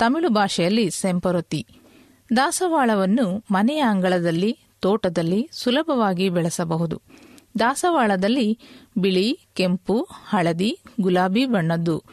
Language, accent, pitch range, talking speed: English, Indian, 185-245 Hz, 80 wpm